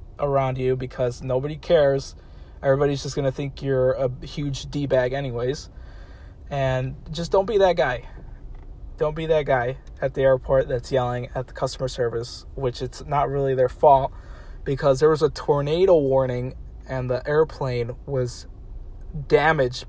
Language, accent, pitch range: English, American, 115-140 Hz